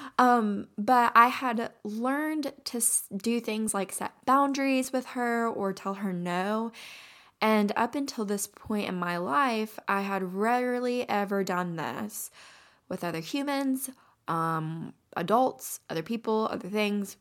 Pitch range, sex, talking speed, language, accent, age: 175-225 Hz, female, 140 wpm, English, American, 10-29